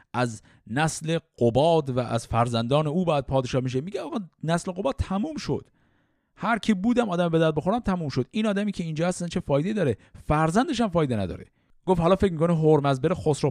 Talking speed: 200 wpm